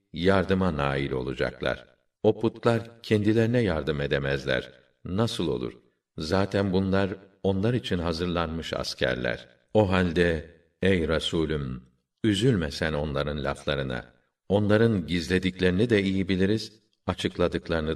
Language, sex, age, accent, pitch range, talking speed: Turkish, male, 50-69, native, 80-100 Hz, 100 wpm